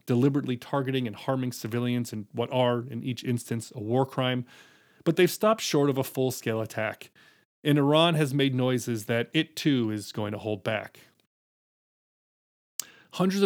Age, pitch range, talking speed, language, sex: 30-49, 115-145 Hz, 160 wpm, English, male